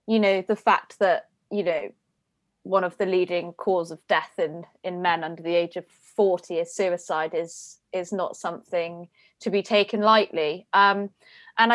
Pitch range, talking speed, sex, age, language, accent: 180-215 Hz, 175 wpm, female, 20-39, English, British